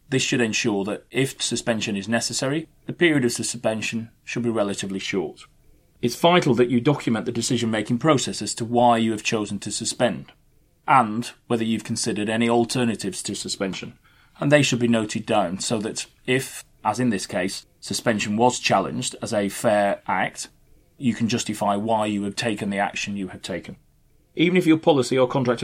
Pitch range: 105-125 Hz